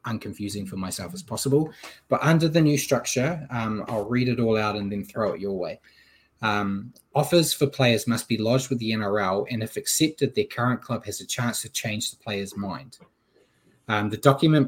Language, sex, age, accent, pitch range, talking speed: English, male, 20-39, Australian, 105-130 Hz, 200 wpm